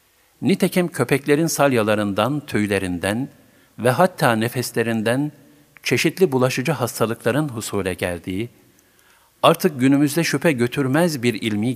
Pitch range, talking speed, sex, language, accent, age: 110-145 Hz, 90 wpm, male, Turkish, native, 50-69